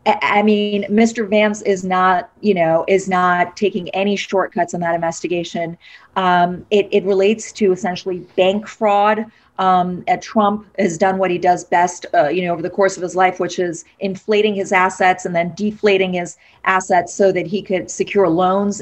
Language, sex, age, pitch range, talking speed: English, female, 40-59, 185-215 Hz, 180 wpm